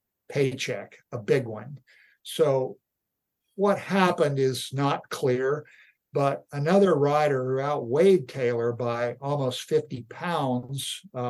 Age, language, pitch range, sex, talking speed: 60-79, English, 125-170 Hz, male, 110 wpm